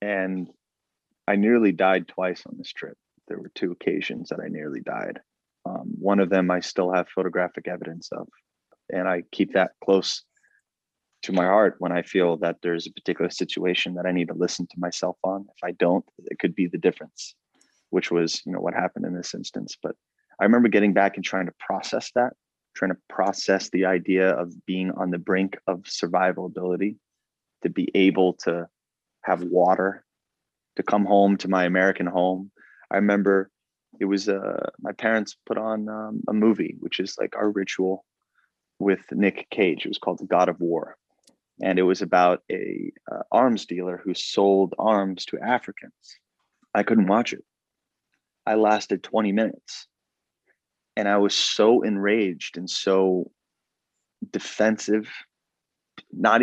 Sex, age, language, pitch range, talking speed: male, 30-49, English, 90-100 Hz, 170 wpm